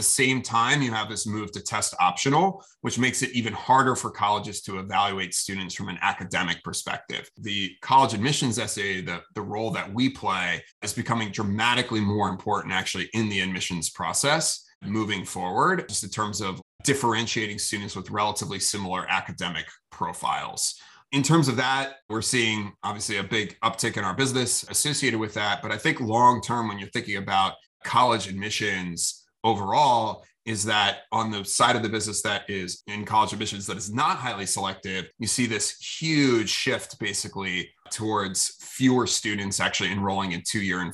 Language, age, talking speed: English, 30-49, 170 wpm